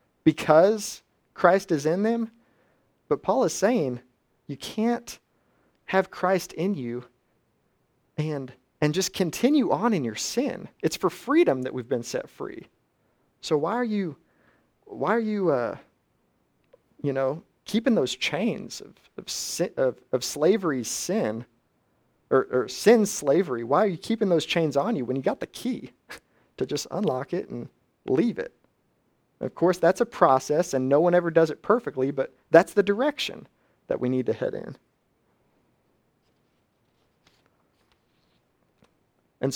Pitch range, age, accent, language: 135-190 Hz, 30-49, American, English